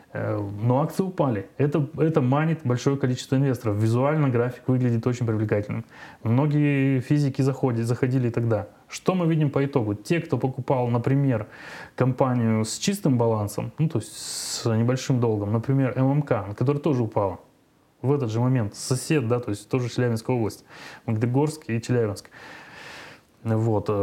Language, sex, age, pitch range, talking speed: Turkish, male, 20-39, 115-140 Hz, 145 wpm